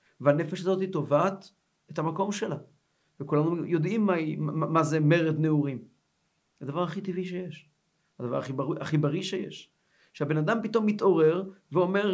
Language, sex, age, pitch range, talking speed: Hebrew, male, 50-69, 140-180 Hz, 150 wpm